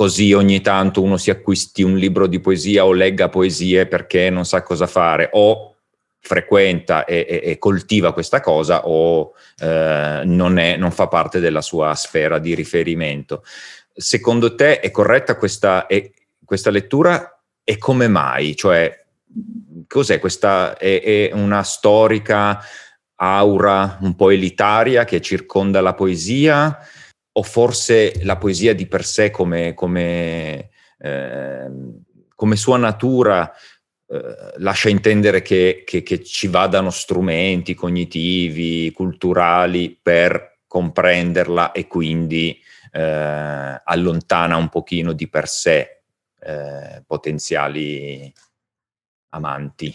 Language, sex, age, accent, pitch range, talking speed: Italian, male, 30-49, native, 85-100 Hz, 120 wpm